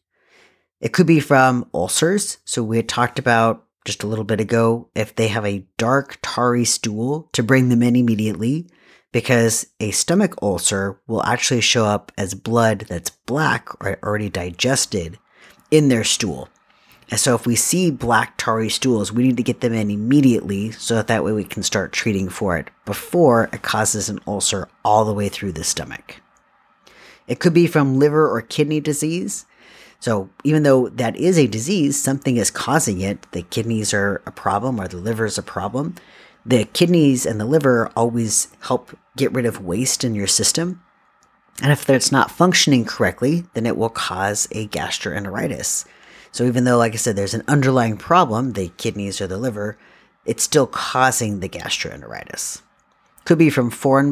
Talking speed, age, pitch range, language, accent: 180 wpm, 30-49, 105-135 Hz, English, American